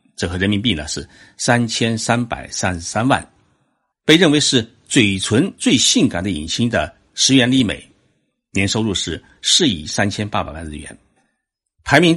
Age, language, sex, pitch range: 60-79, Chinese, male, 90-125 Hz